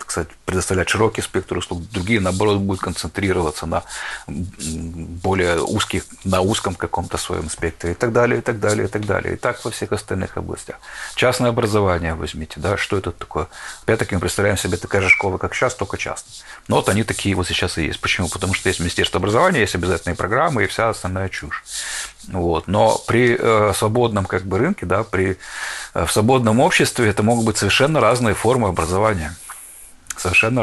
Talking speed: 160 wpm